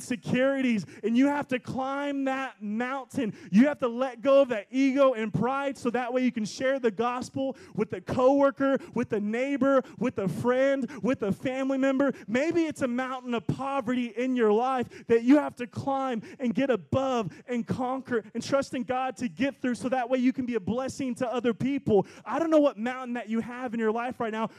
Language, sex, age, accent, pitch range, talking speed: English, male, 20-39, American, 220-265 Hz, 215 wpm